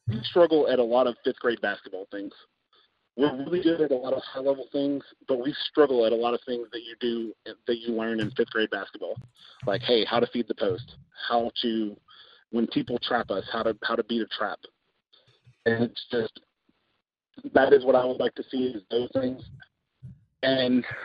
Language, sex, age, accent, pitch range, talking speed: English, male, 40-59, American, 115-140 Hz, 200 wpm